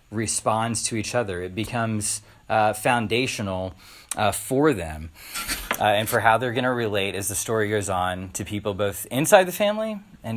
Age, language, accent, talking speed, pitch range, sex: 30-49, English, American, 180 wpm, 105-160 Hz, male